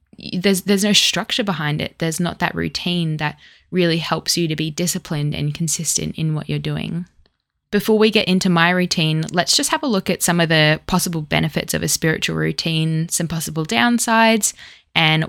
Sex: female